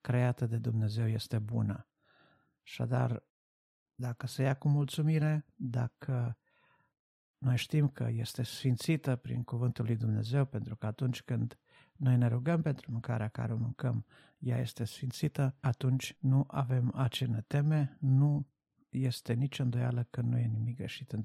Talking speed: 145 wpm